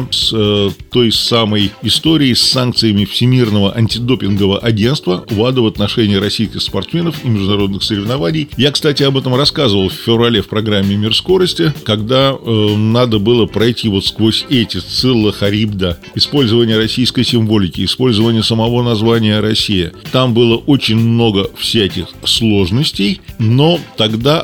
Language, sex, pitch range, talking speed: Russian, male, 105-130 Hz, 140 wpm